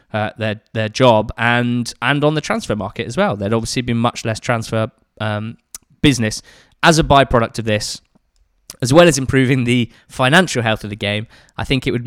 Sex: male